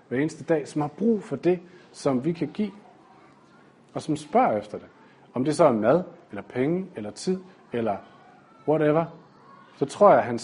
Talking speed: 190 wpm